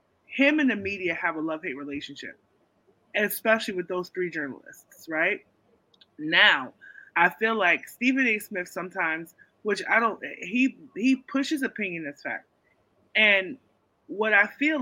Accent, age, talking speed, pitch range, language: American, 20-39, 140 wpm, 180-255 Hz, English